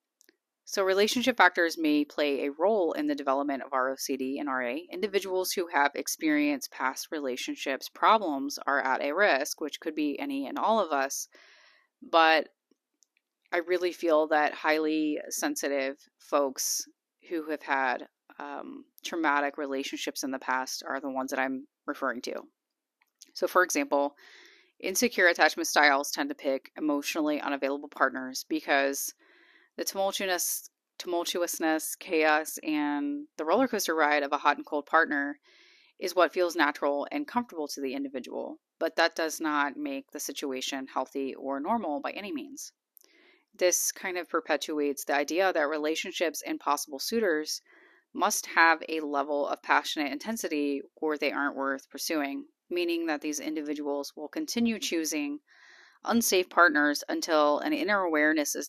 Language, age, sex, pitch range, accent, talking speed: English, 30-49, female, 145-215 Hz, American, 145 wpm